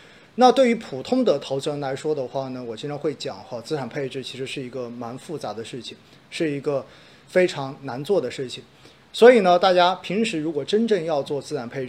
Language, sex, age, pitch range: Chinese, male, 30-49, 130-180 Hz